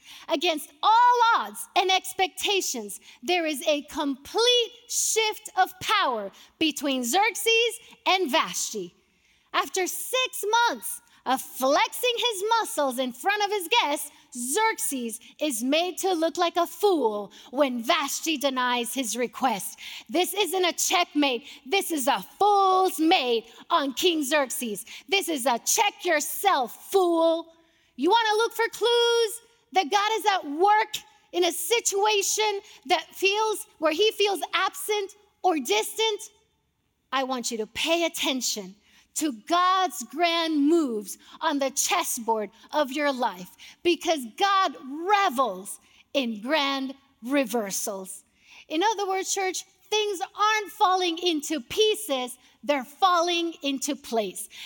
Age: 30-49